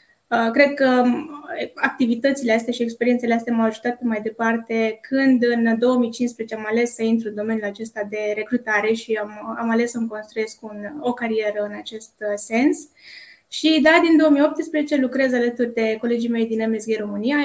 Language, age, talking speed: Romanian, 20-39, 160 wpm